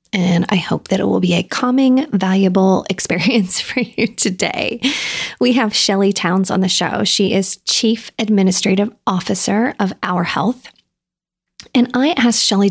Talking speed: 155 wpm